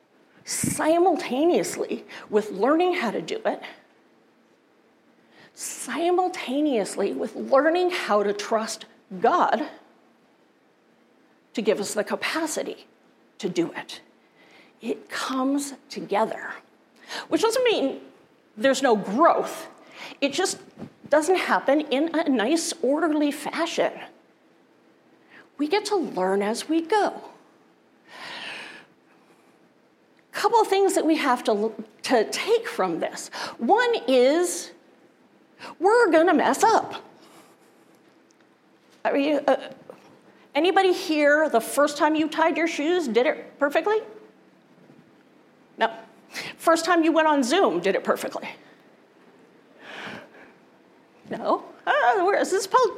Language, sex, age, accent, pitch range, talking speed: English, female, 40-59, American, 265-370 Hz, 110 wpm